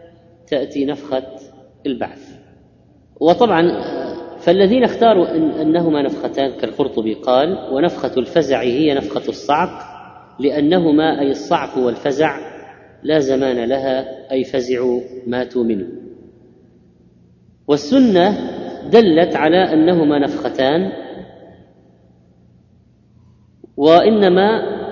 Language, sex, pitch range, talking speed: Arabic, female, 135-170 Hz, 75 wpm